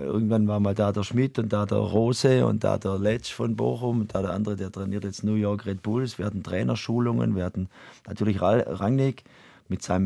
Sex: male